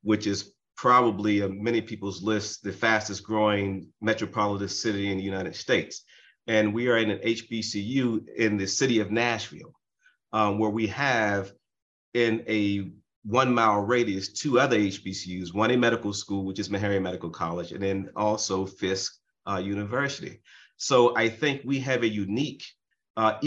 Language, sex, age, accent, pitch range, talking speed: English, male, 30-49, American, 95-115 Hz, 160 wpm